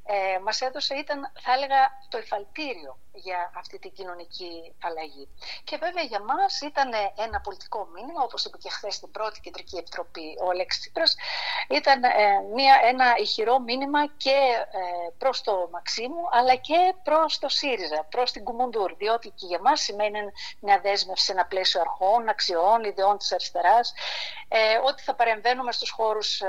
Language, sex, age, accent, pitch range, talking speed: Greek, female, 50-69, native, 190-270 Hz, 150 wpm